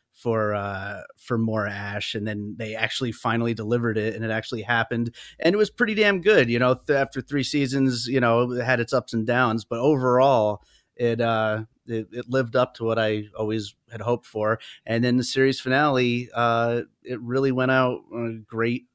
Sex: male